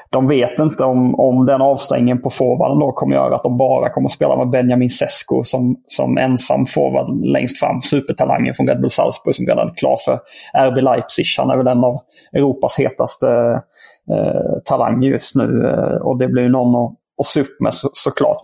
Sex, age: male, 30-49